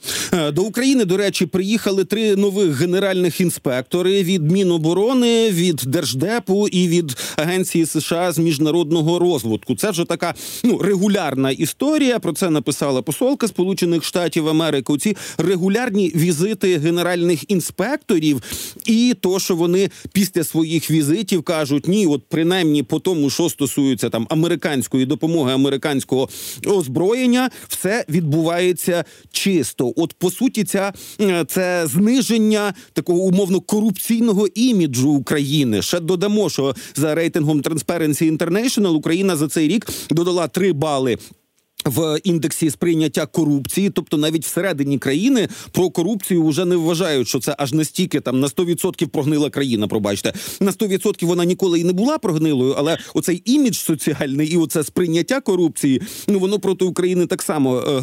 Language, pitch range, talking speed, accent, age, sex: Ukrainian, 150-190 Hz, 135 wpm, native, 40-59, male